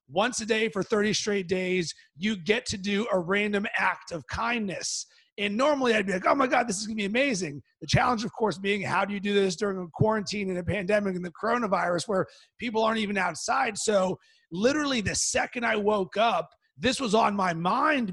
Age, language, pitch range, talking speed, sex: 30-49, English, 195-235 Hz, 215 wpm, male